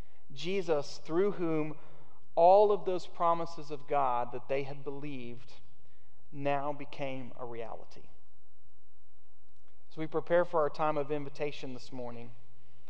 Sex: male